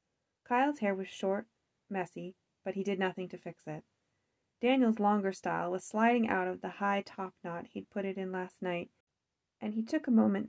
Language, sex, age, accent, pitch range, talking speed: English, female, 30-49, American, 175-210 Hz, 195 wpm